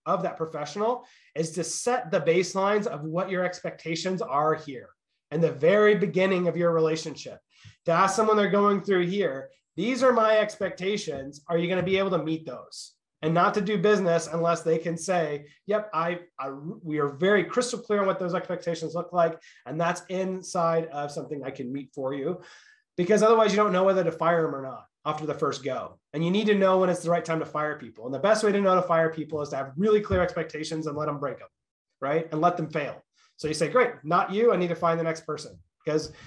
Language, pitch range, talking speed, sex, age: English, 155-190 Hz, 235 wpm, male, 30-49